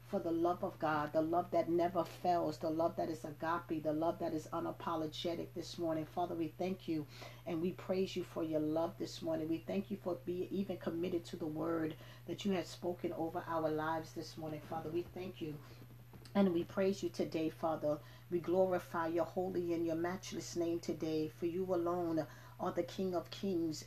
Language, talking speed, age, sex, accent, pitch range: English, 205 wpm, 40-59, female, American, 160-180 Hz